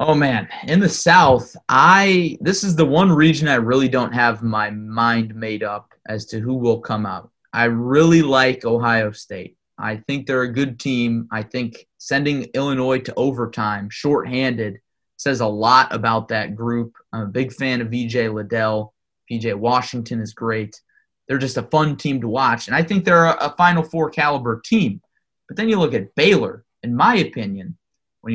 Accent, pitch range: American, 115-145 Hz